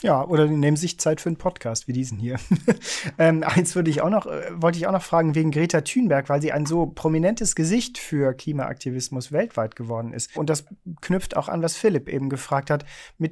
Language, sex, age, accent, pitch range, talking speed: German, male, 40-59, German, 135-165 Hz, 205 wpm